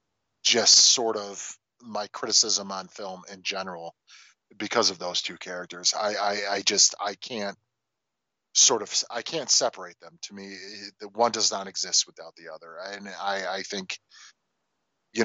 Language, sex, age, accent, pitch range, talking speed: English, male, 30-49, American, 95-110 Hz, 160 wpm